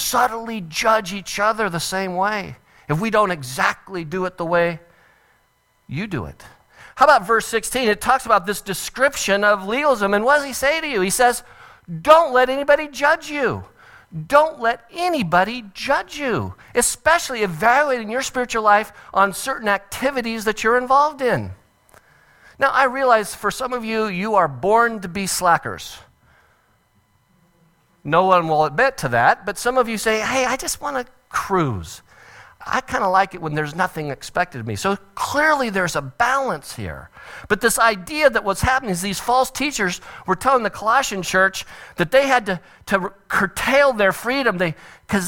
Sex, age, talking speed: male, 50-69, 170 wpm